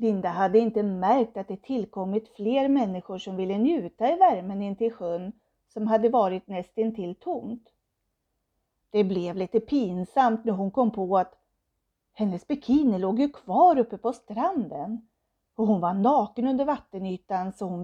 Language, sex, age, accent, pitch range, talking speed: Swedish, female, 40-59, native, 190-250 Hz, 160 wpm